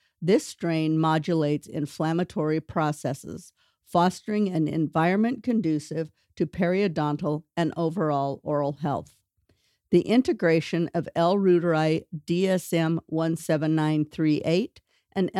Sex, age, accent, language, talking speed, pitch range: female, 50-69, American, English, 85 wpm, 155-185 Hz